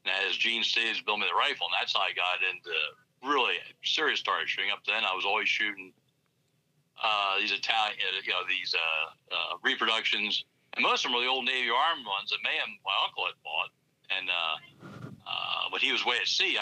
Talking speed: 210 wpm